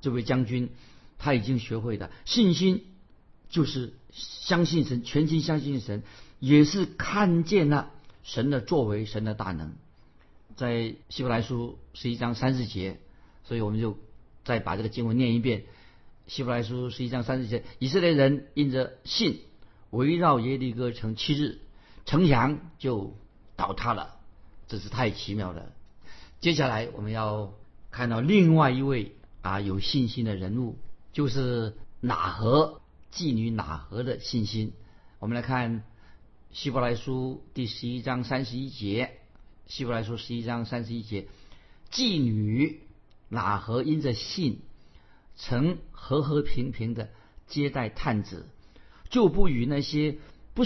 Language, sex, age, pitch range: Chinese, male, 50-69, 105-135 Hz